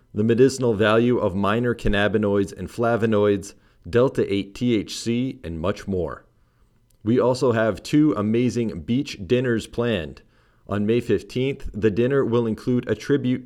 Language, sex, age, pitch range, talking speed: English, male, 40-59, 100-120 Hz, 130 wpm